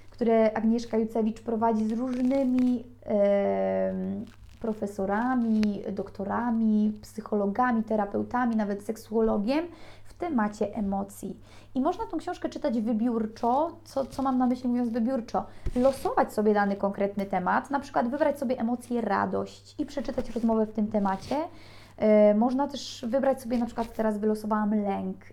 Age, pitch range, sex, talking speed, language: 20-39, 205-250 Hz, female, 130 wpm, Polish